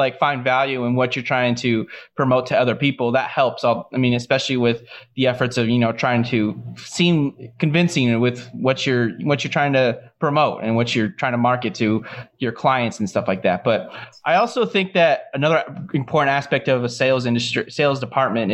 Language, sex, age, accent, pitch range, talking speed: English, male, 20-39, American, 120-150 Hz, 200 wpm